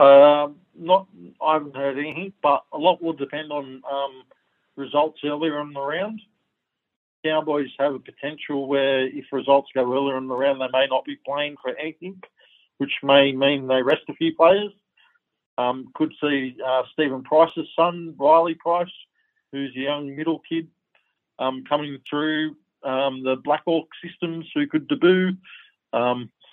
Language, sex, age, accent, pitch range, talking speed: English, male, 50-69, Australian, 130-155 Hz, 155 wpm